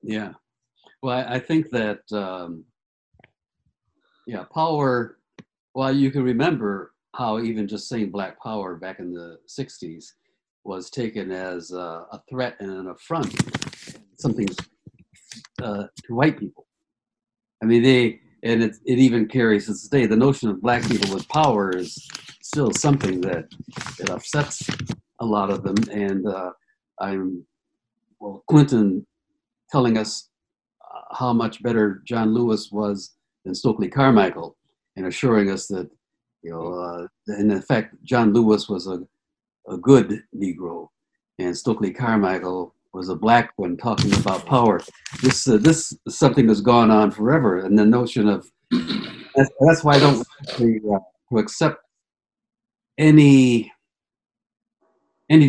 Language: English